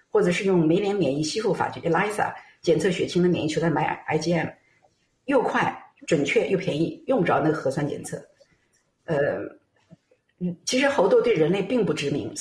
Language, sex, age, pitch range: Chinese, female, 50-69, 165-235 Hz